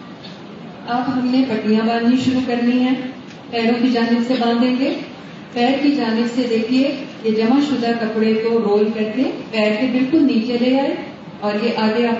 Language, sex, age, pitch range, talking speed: Urdu, female, 40-59, 215-250 Hz, 175 wpm